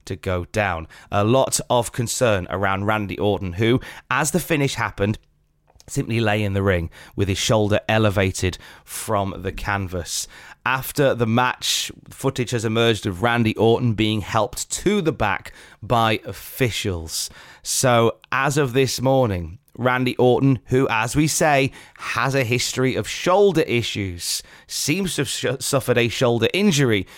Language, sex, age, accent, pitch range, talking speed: English, male, 30-49, British, 95-125 Hz, 150 wpm